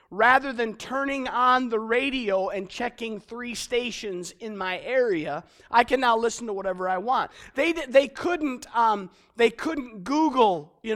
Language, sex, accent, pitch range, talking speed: English, male, American, 215-275 Hz, 160 wpm